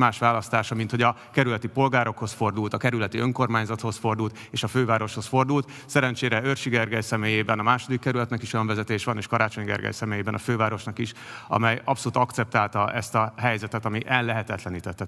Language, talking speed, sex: Hungarian, 165 wpm, male